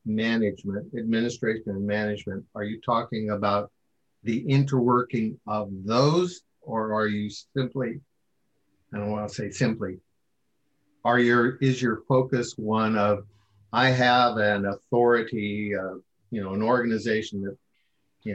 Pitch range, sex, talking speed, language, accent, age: 105-125 Hz, male, 130 wpm, English, American, 50-69